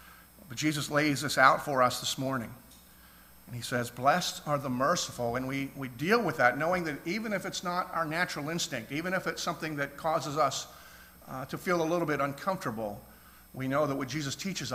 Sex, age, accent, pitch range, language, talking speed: male, 50-69, American, 130-170 Hz, English, 210 wpm